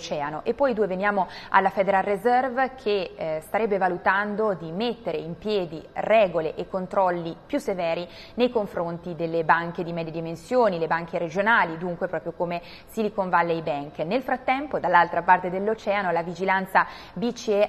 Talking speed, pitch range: 150 wpm, 175-215 Hz